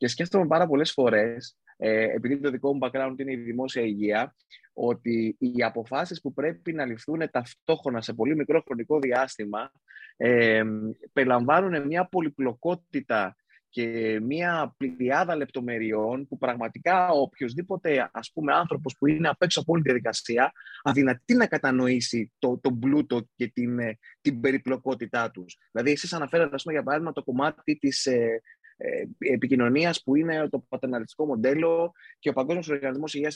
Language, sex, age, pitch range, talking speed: Greek, male, 20-39, 120-160 Hz, 135 wpm